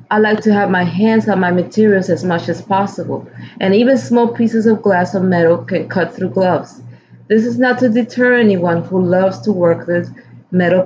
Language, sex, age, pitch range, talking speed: English, female, 30-49, 180-230 Hz, 205 wpm